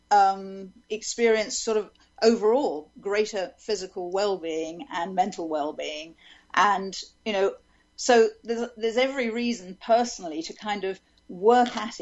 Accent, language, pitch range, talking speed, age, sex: British, English, 185-235 Hz, 125 wpm, 50-69, female